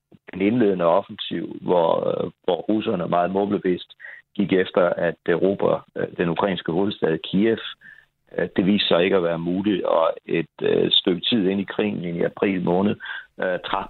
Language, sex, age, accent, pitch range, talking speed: Danish, male, 60-79, native, 90-115 Hz, 160 wpm